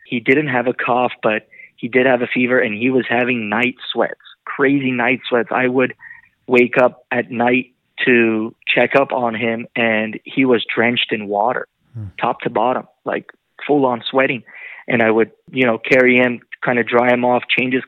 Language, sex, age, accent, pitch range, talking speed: English, male, 20-39, American, 120-135 Hz, 190 wpm